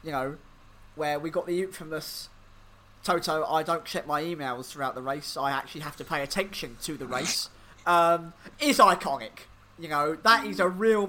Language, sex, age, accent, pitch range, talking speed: English, male, 30-49, British, 135-195 Hz, 185 wpm